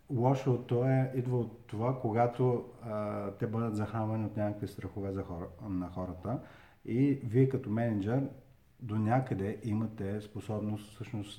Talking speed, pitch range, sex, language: 135 wpm, 100-115 Hz, male, Bulgarian